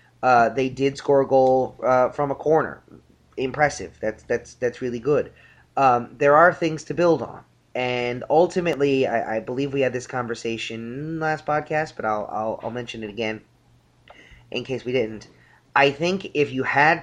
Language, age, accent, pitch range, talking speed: English, 30-49, American, 115-150 Hz, 180 wpm